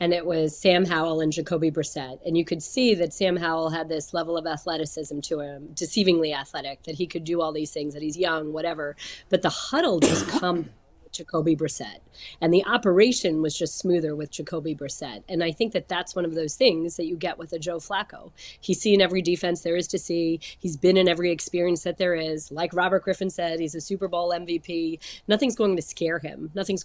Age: 30-49